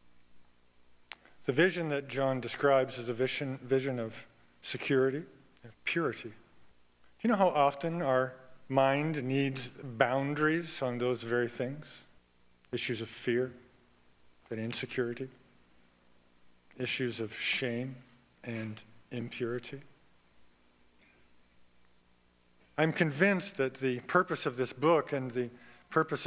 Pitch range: 105-170 Hz